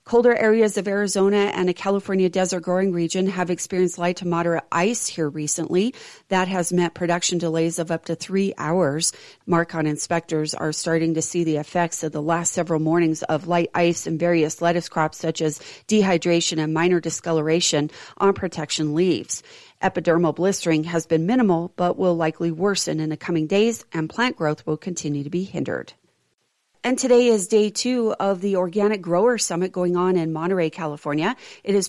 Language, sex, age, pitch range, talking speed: English, female, 40-59, 160-190 Hz, 180 wpm